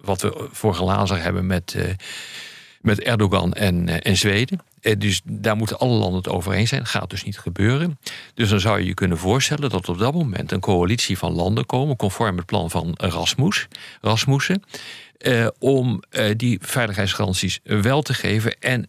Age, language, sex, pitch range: 50-69, Dutch, male, 95-120 Hz